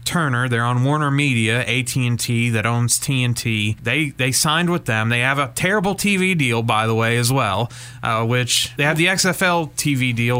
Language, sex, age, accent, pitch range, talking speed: English, male, 30-49, American, 115-145 Hz, 190 wpm